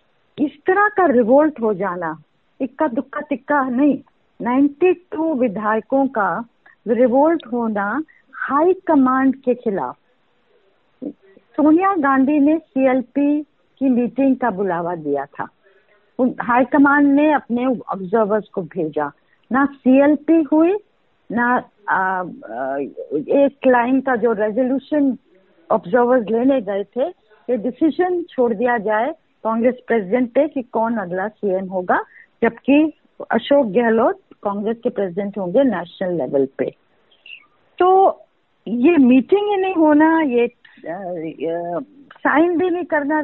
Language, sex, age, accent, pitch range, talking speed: Hindi, female, 50-69, native, 225-295 Hz, 120 wpm